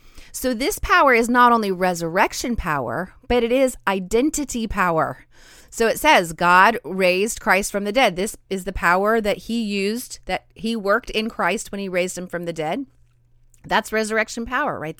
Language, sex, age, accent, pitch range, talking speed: English, female, 30-49, American, 175-235 Hz, 180 wpm